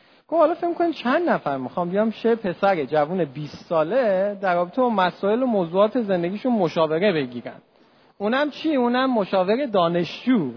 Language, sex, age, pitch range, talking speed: Persian, male, 40-59, 165-250 Hz, 150 wpm